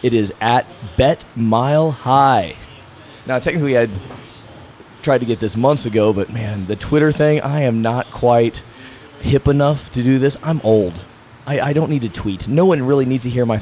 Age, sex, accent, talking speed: 30-49, male, American, 195 wpm